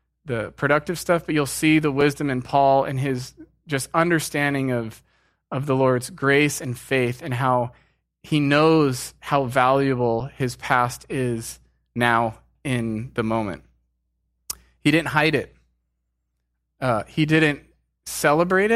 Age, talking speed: 20-39, 135 wpm